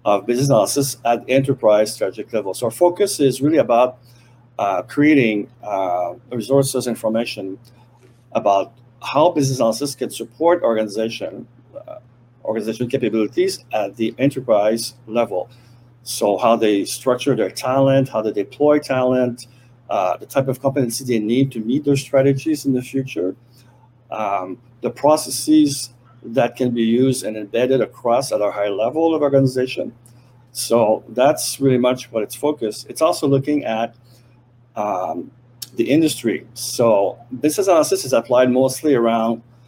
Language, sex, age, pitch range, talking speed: English, male, 50-69, 115-135 Hz, 140 wpm